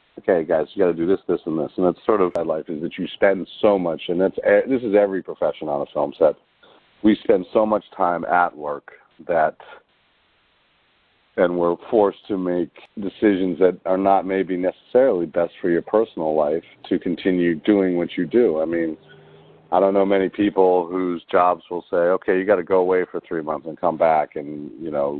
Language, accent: English, American